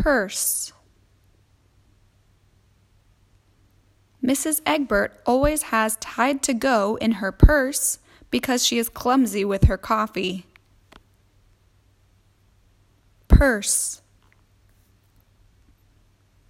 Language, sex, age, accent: English, female, 10-29, American